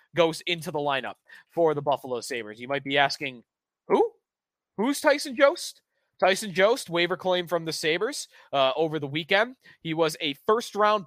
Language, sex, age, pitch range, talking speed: English, male, 20-39, 145-185 Hz, 170 wpm